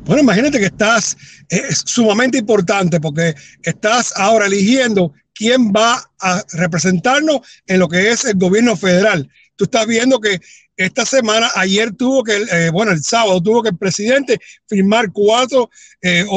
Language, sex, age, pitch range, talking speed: English, male, 60-79, 185-255 Hz, 150 wpm